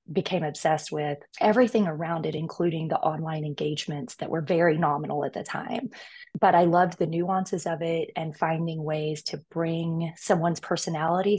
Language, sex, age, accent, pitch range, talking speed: English, female, 20-39, American, 155-190 Hz, 165 wpm